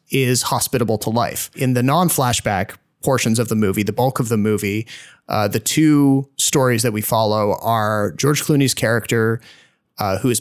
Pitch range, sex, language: 110-135 Hz, male, English